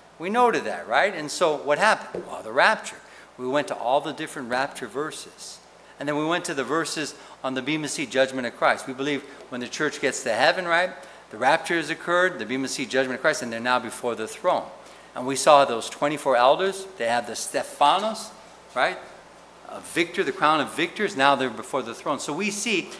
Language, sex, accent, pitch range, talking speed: English, male, American, 125-190 Hz, 215 wpm